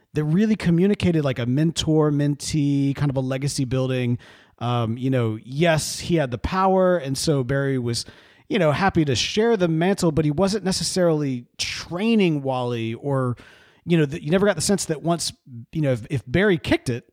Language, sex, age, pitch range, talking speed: English, male, 40-59, 120-170 Hz, 195 wpm